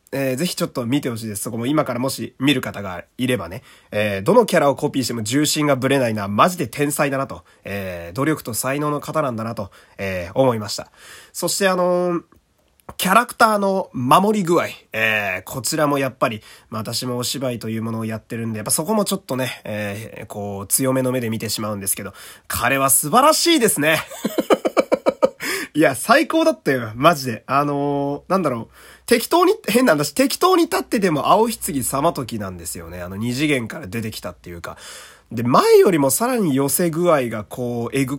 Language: Japanese